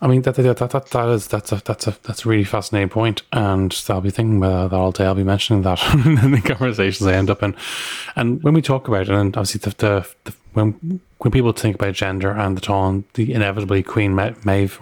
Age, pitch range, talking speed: 20-39, 95-110 Hz, 250 wpm